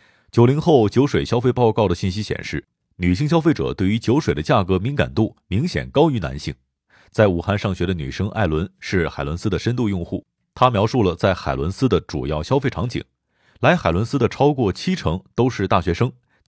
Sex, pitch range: male, 90-125 Hz